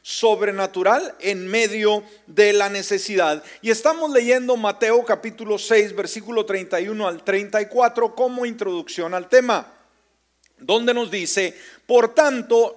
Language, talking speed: Spanish, 115 wpm